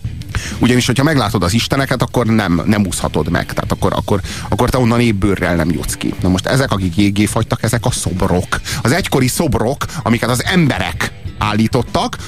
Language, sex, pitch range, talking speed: Hungarian, male, 100-125 Hz, 175 wpm